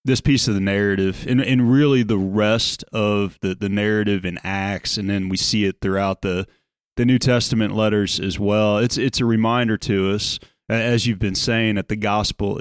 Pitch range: 100-125 Hz